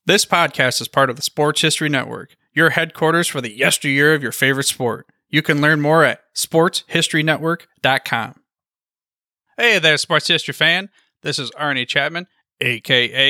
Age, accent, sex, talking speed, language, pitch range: 30-49, American, male, 155 wpm, English, 130-175 Hz